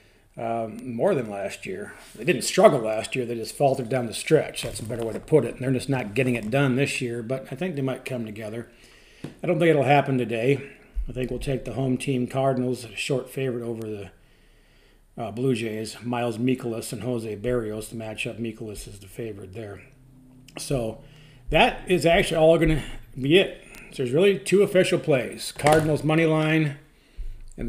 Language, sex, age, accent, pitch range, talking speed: English, male, 40-59, American, 115-140 Hz, 200 wpm